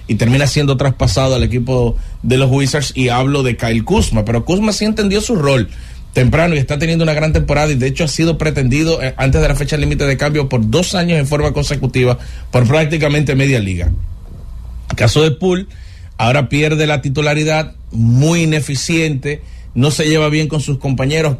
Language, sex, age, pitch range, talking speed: English, male, 30-49, 120-155 Hz, 190 wpm